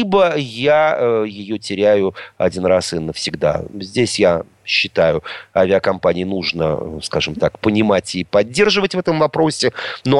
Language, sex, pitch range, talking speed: Russian, male, 100-155 Hz, 130 wpm